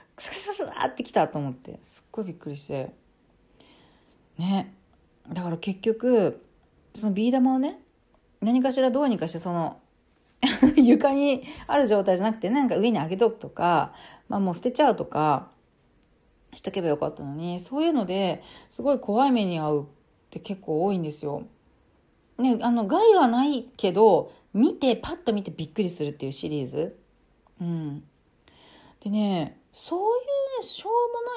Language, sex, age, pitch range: Japanese, female, 40-59, 165-265 Hz